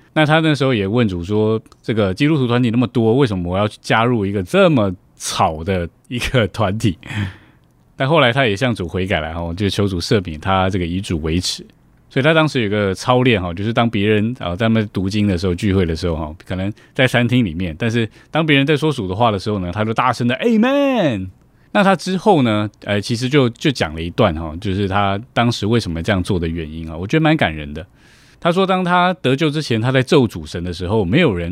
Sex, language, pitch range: male, Chinese, 95-130 Hz